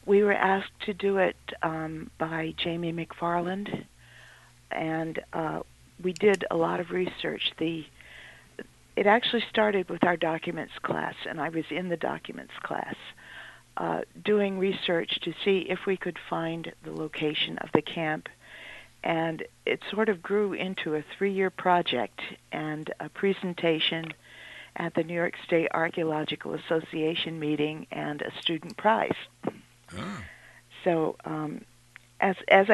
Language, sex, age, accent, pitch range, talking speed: English, female, 50-69, American, 155-190 Hz, 135 wpm